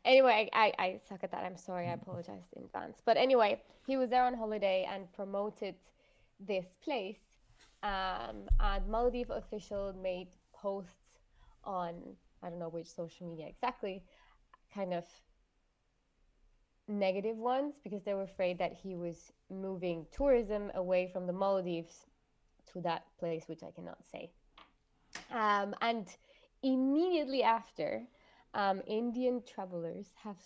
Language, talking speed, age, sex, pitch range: English, 135 wpm, 20-39, female, 180-220 Hz